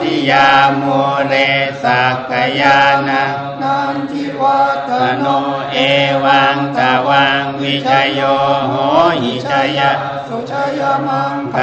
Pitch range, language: 135-140 Hz, Thai